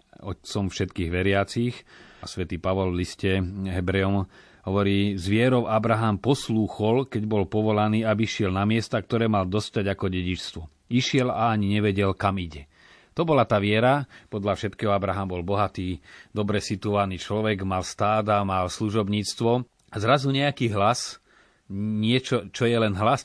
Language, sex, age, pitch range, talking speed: Slovak, male, 30-49, 100-120 Hz, 145 wpm